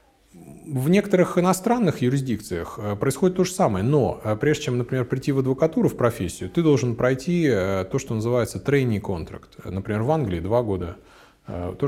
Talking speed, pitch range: 150 wpm, 105-150 Hz